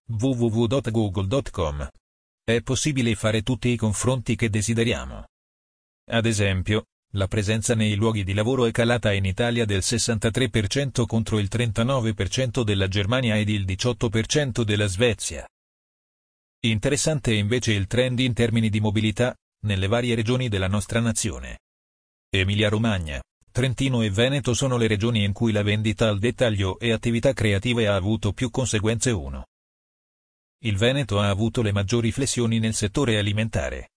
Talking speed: 140 wpm